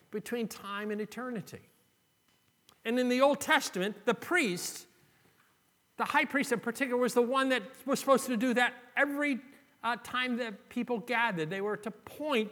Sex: male